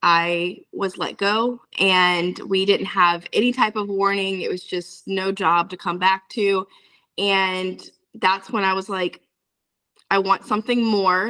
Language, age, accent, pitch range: English, 20-39, American, 180-225 Hz